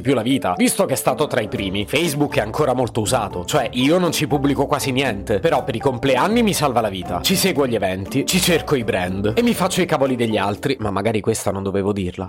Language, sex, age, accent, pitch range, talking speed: Italian, male, 30-49, native, 115-160 Hz, 250 wpm